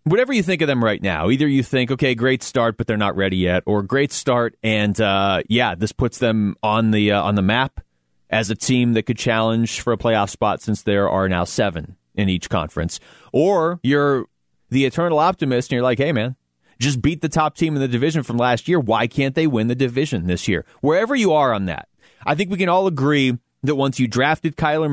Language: English